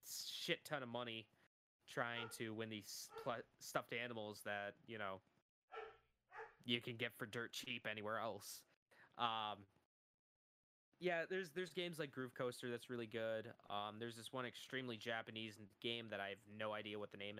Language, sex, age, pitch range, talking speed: English, male, 20-39, 110-130 Hz, 165 wpm